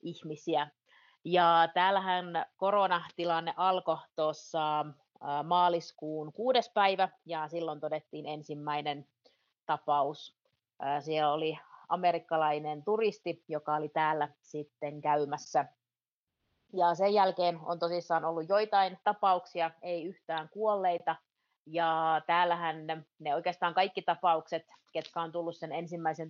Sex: female